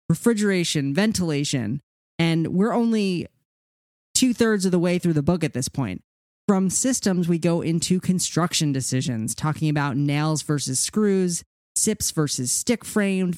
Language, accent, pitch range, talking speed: English, American, 145-185 Hz, 135 wpm